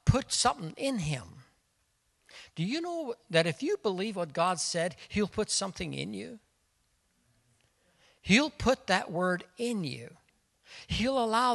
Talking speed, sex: 140 wpm, male